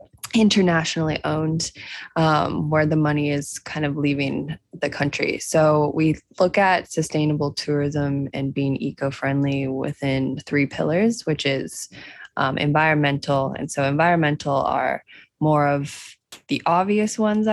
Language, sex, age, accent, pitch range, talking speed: English, female, 20-39, American, 140-165 Hz, 125 wpm